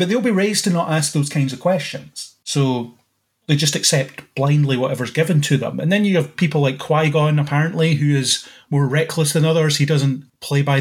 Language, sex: English, male